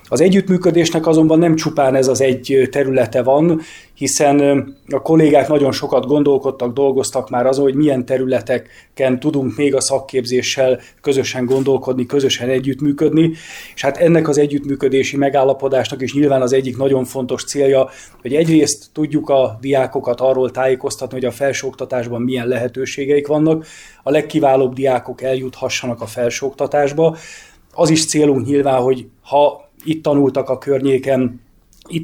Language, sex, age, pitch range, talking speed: Hungarian, male, 20-39, 130-145 Hz, 135 wpm